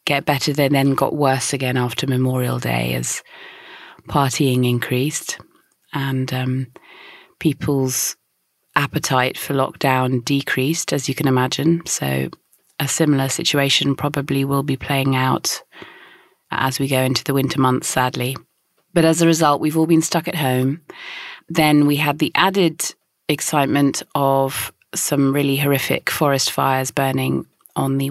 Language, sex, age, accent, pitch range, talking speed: English, female, 30-49, British, 130-150 Hz, 140 wpm